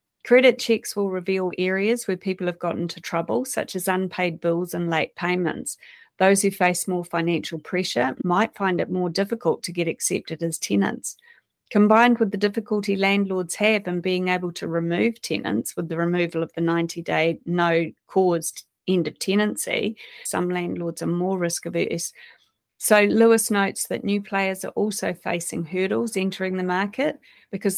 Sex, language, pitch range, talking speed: female, English, 175-215 Hz, 160 wpm